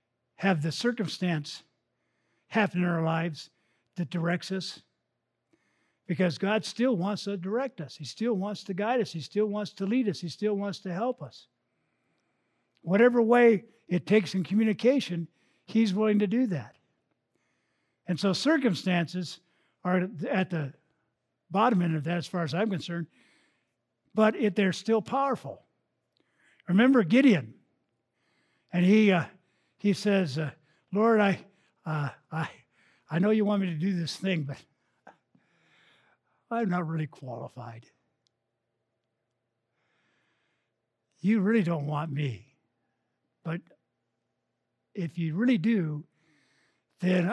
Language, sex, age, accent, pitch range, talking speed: English, male, 60-79, American, 150-205 Hz, 130 wpm